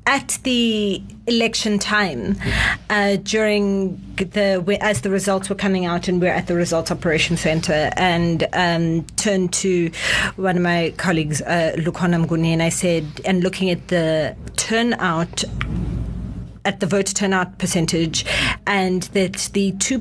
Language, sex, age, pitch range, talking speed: English, female, 30-49, 165-200 Hz, 145 wpm